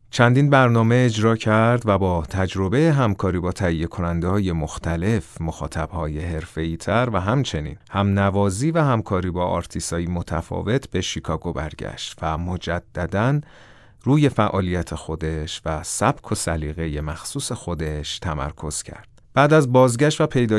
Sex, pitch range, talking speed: male, 85-110 Hz, 135 wpm